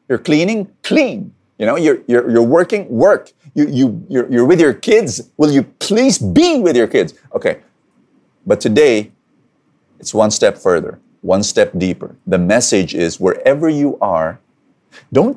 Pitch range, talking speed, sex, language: 155-250 Hz, 160 wpm, male, English